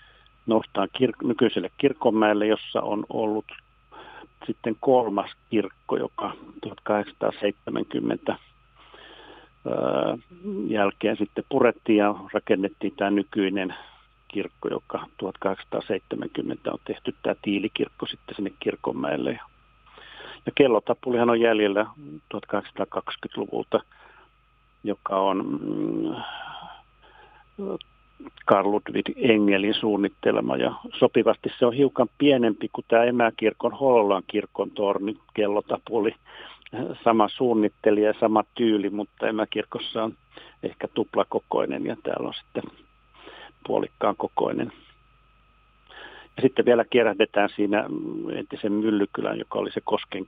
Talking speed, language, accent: 100 wpm, Finnish, native